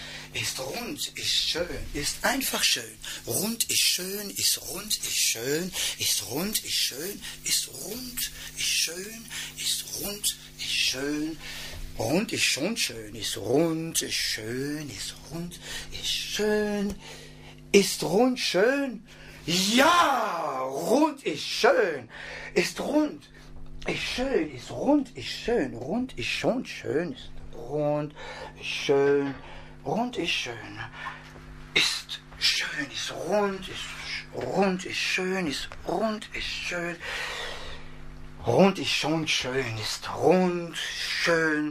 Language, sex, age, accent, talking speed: English, male, 60-79, German, 110 wpm